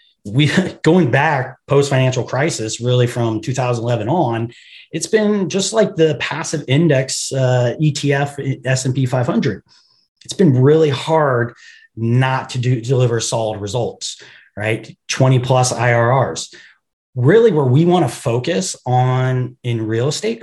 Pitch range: 125-160 Hz